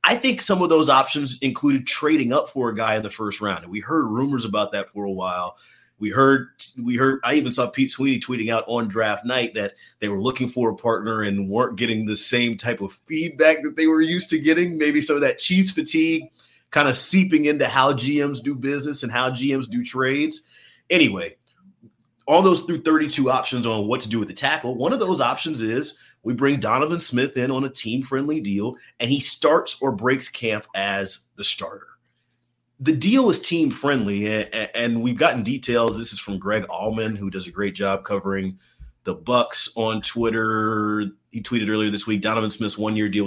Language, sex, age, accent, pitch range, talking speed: English, male, 30-49, American, 110-150 Hz, 205 wpm